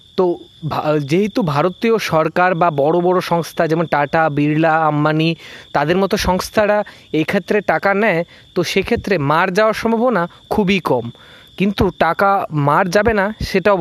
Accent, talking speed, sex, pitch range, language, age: native, 145 wpm, male, 160-210 Hz, Bengali, 20-39